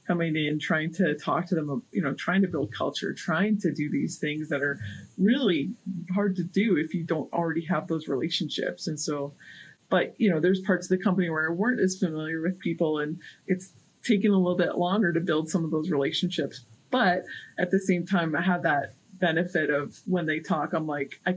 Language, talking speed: English, 215 wpm